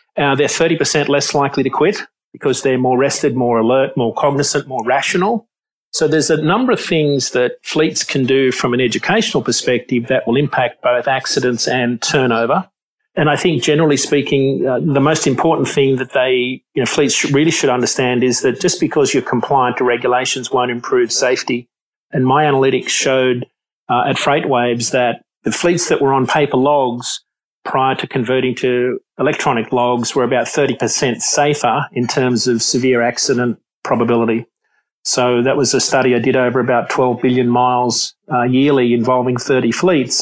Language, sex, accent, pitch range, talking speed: English, male, Australian, 125-145 Hz, 175 wpm